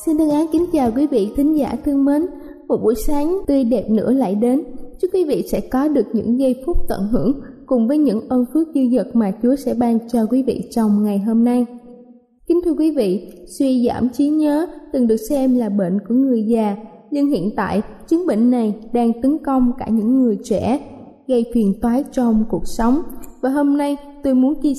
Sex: female